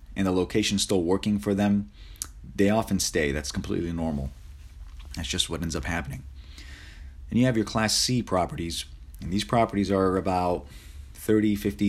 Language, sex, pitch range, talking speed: English, male, 75-100 Hz, 165 wpm